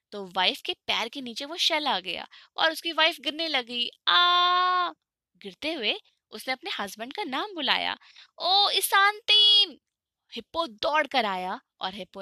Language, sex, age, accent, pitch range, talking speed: Hindi, female, 20-39, native, 200-305 Hz, 135 wpm